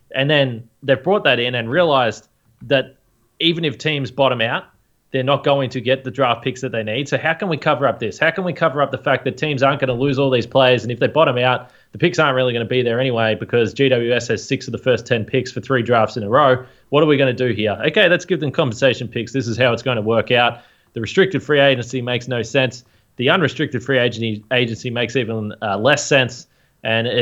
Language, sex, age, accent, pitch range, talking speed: English, male, 20-39, Australian, 120-140 Hz, 255 wpm